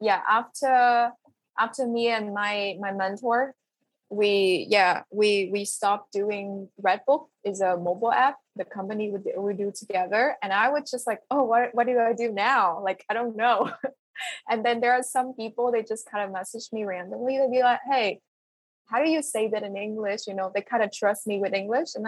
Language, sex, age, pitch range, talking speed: English, female, 20-39, 205-265 Hz, 200 wpm